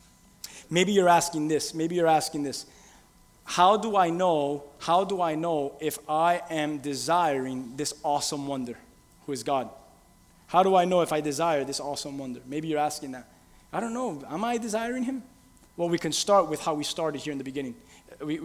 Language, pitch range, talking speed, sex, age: English, 140-175 Hz, 195 wpm, male, 20-39